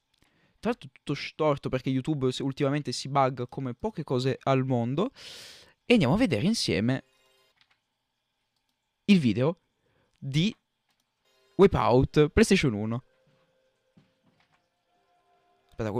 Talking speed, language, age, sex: 90 wpm, Italian, 20-39, male